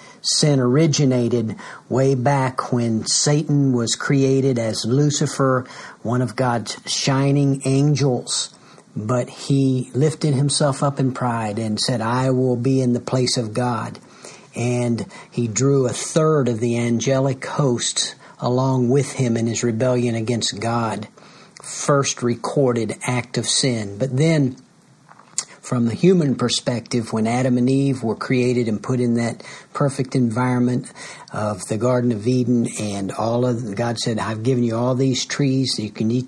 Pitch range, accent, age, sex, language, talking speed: 120-135 Hz, American, 50-69, male, English, 155 wpm